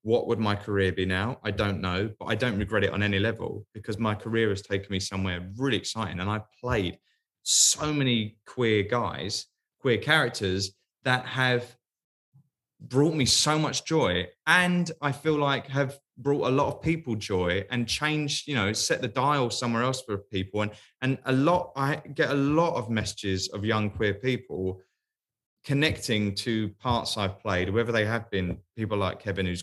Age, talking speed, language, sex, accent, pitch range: 20-39, 185 wpm, English, male, British, 105-130 Hz